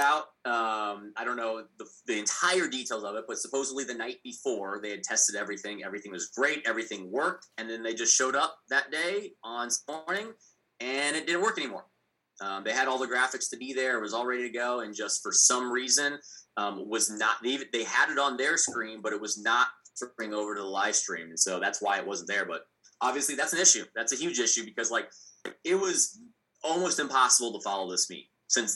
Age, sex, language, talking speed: 20-39, male, English, 225 wpm